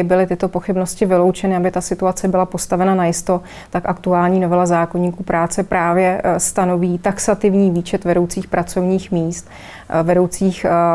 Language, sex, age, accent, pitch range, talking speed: Czech, female, 30-49, native, 175-190 Hz, 130 wpm